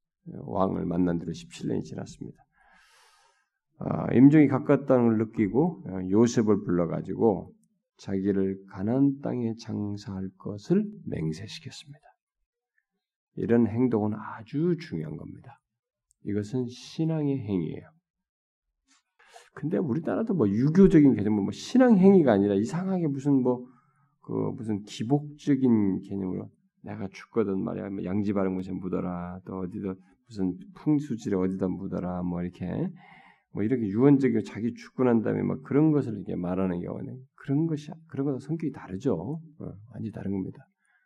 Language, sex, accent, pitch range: Korean, male, native, 100-150 Hz